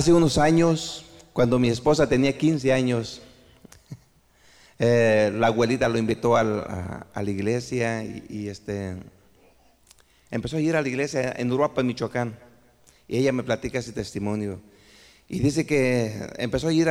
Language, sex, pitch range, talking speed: Spanish, male, 120-155 Hz, 155 wpm